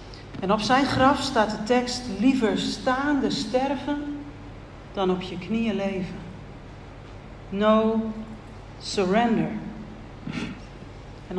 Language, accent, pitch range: Dutch, Dutch, 185-240 Hz